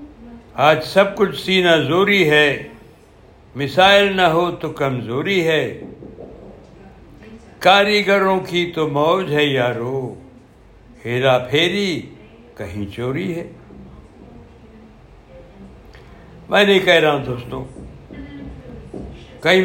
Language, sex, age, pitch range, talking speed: Urdu, male, 60-79, 125-165 Hz, 90 wpm